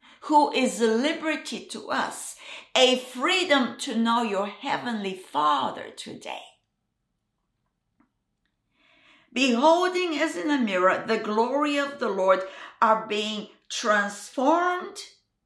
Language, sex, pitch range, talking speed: English, female, 230-320 Hz, 100 wpm